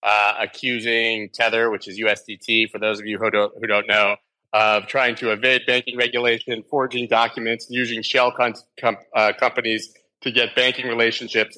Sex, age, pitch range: male, 30-49, 100-120 Hz